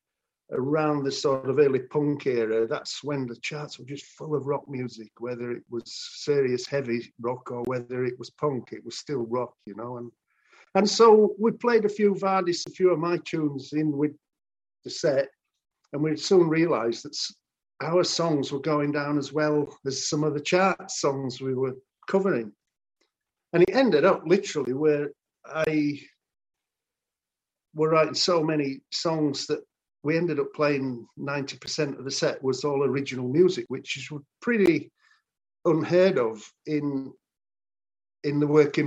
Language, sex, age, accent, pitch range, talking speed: German, male, 50-69, British, 130-165 Hz, 165 wpm